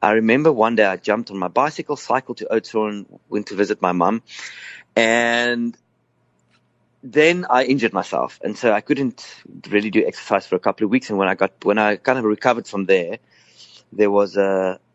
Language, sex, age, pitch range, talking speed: English, male, 30-49, 100-125 Hz, 195 wpm